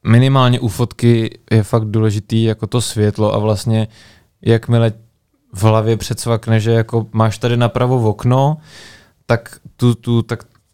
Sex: male